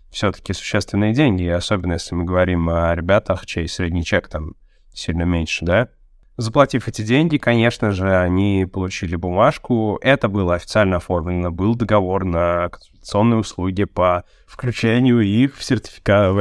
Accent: native